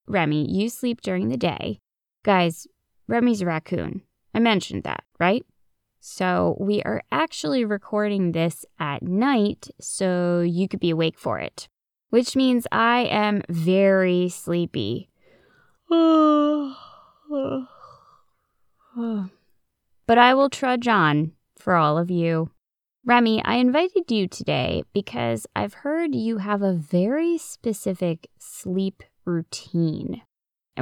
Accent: American